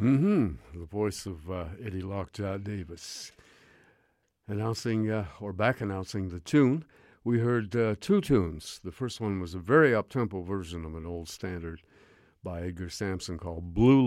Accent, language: American, English